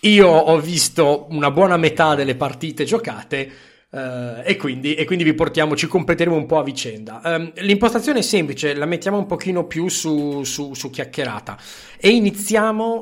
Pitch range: 135-195 Hz